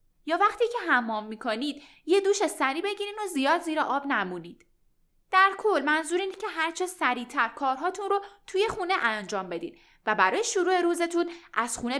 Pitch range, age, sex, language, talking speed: 240-365 Hz, 10-29, female, Persian, 160 wpm